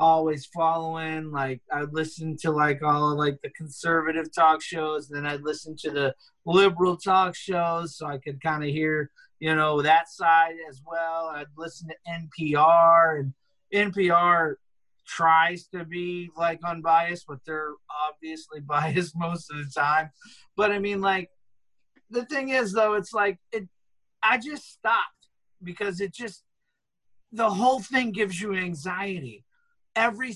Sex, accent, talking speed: male, American, 150 wpm